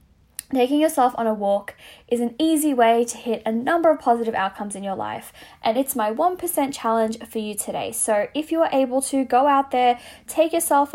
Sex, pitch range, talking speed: female, 205-260 Hz, 210 wpm